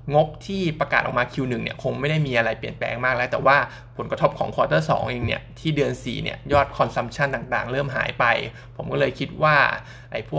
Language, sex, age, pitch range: Thai, male, 20-39, 125-145 Hz